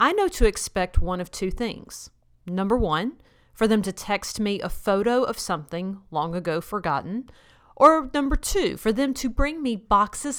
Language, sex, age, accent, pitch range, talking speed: English, female, 40-59, American, 175-245 Hz, 180 wpm